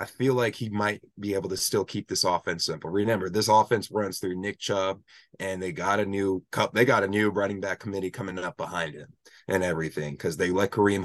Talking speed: 235 wpm